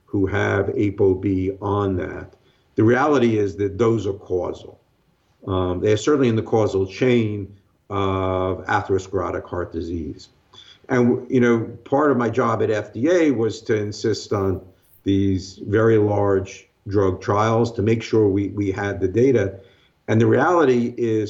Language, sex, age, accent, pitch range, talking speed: English, male, 50-69, American, 95-120 Hz, 150 wpm